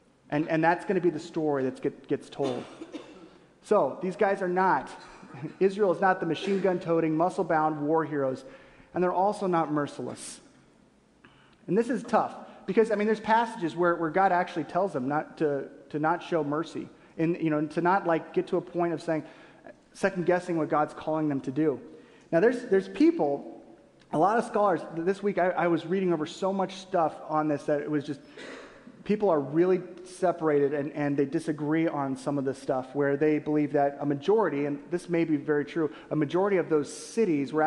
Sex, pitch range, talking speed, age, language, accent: male, 150-180 Hz, 205 wpm, 30-49, English, American